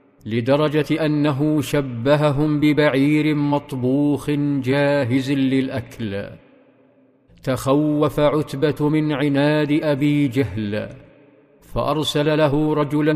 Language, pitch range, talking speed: Arabic, 135-150 Hz, 75 wpm